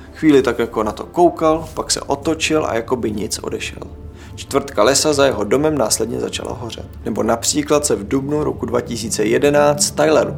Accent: native